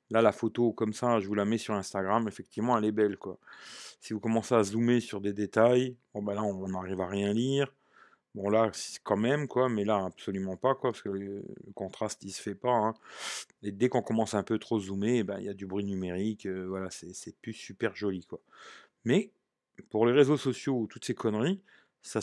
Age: 30-49